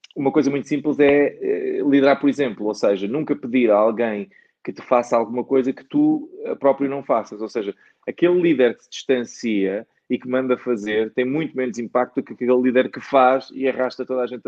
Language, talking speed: English, 205 wpm